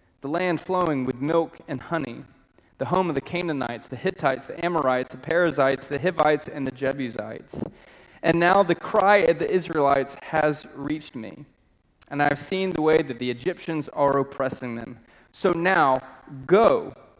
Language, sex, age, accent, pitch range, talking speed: English, male, 30-49, American, 140-185 Hz, 165 wpm